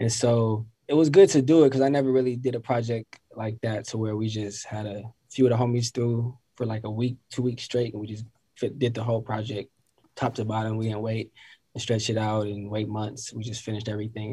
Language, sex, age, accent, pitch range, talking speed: English, male, 20-39, American, 110-125 Hz, 245 wpm